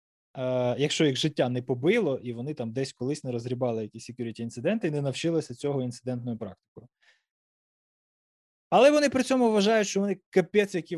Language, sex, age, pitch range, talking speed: Ukrainian, male, 20-39, 120-160 Hz, 165 wpm